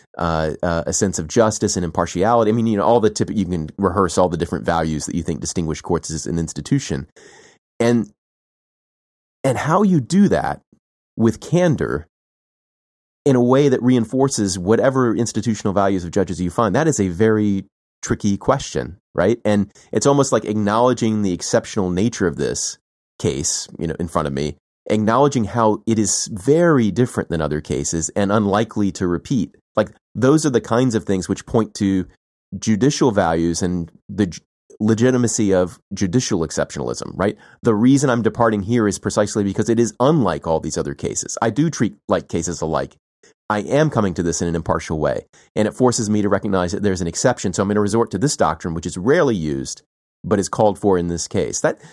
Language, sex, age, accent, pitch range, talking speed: English, male, 30-49, American, 90-115 Hz, 195 wpm